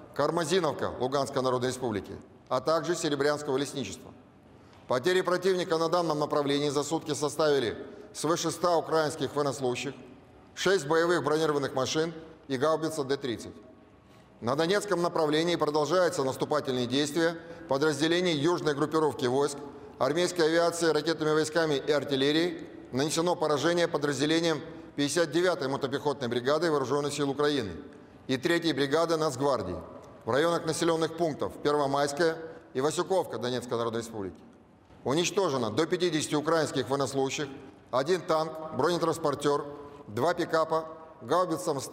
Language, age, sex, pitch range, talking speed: Russian, 30-49, male, 140-165 Hz, 110 wpm